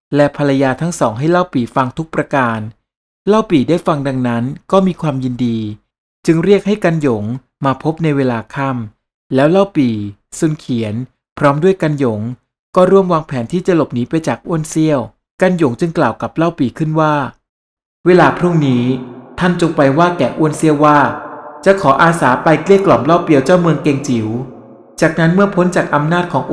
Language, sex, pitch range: Thai, male, 130-175 Hz